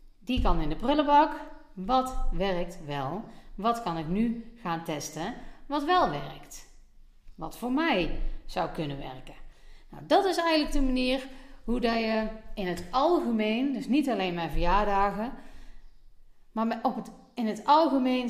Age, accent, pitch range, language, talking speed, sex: 40-59, Dutch, 175-275 Hz, Dutch, 150 wpm, female